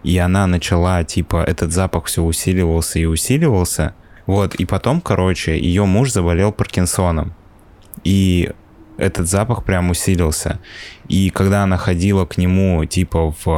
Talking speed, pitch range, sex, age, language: 135 wpm, 85-95 Hz, male, 20-39, Russian